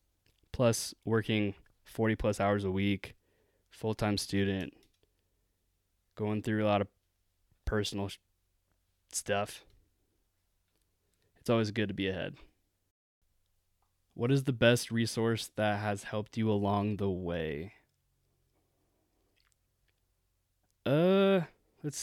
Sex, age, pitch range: male, 20-39, 90-115 Hz